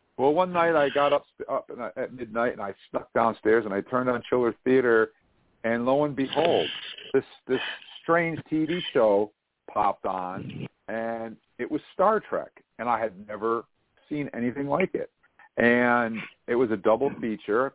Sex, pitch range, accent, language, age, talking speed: male, 110-145 Hz, American, English, 50-69, 165 wpm